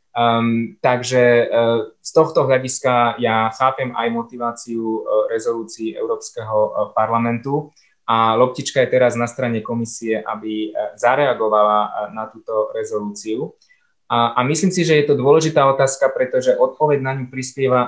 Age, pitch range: 20-39, 115-135 Hz